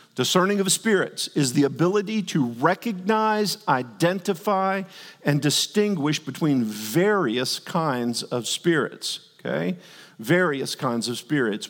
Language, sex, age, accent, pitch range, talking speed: English, male, 50-69, American, 155-210 Hz, 110 wpm